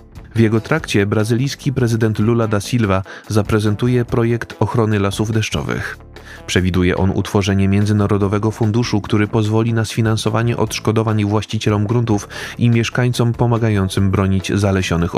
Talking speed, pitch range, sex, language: 120 wpm, 95-115 Hz, male, Polish